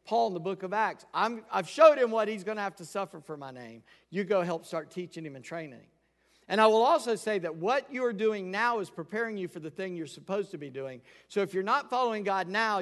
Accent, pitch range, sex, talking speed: American, 140-185 Hz, male, 265 wpm